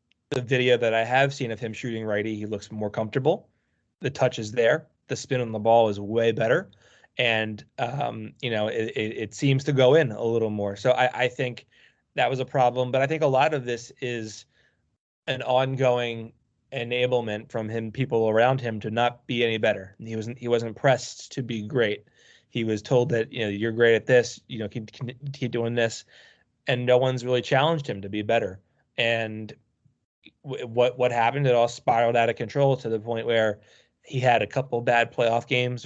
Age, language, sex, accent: 20-39, Italian, male, American